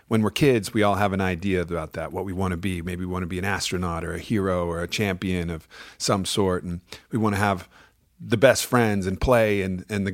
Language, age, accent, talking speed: English, 40-59, American, 260 wpm